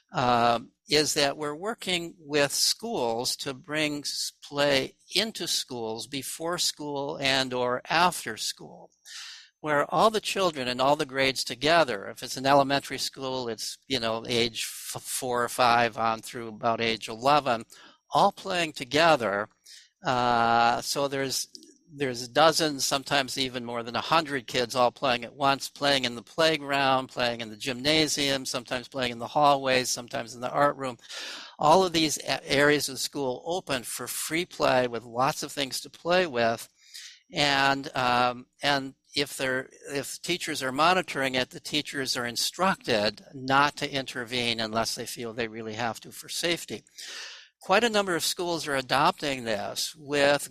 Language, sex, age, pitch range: English, male, 60-79, 120-145 Hz